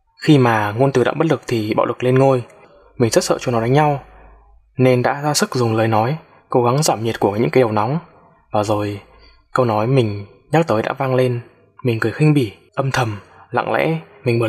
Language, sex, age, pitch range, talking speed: Vietnamese, male, 20-39, 110-135 Hz, 230 wpm